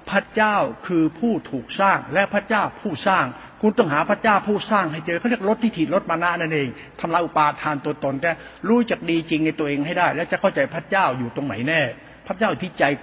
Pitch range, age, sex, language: 155-205 Hz, 60-79, male, Thai